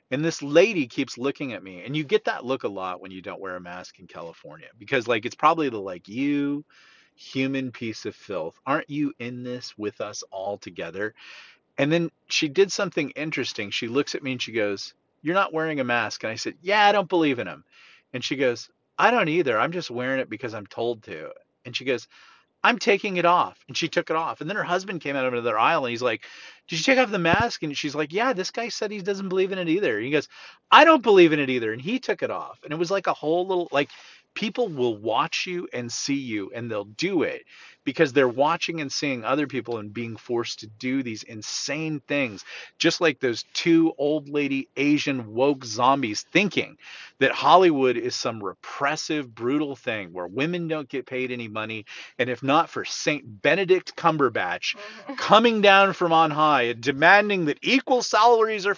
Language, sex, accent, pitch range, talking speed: English, male, American, 125-180 Hz, 220 wpm